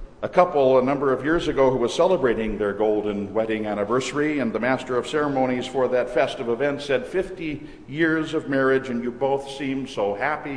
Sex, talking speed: male, 195 wpm